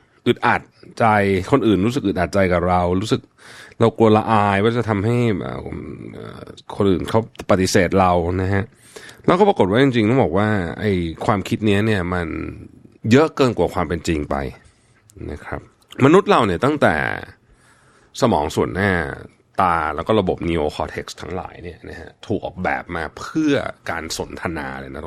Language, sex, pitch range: Thai, male, 90-120 Hz